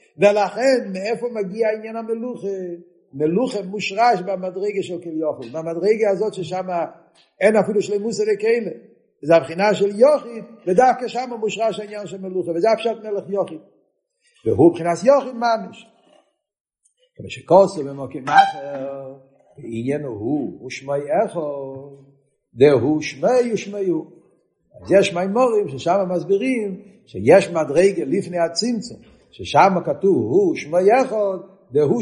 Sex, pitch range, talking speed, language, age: male, 135-210 Hz, 120 wpm, Hebrew, 50-69